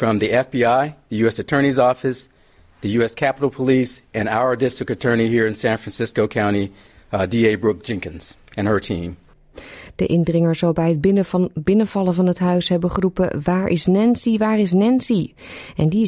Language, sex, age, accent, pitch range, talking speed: Dutch, female, 40-59, Dutch, 145-190 Hz, 160 wpm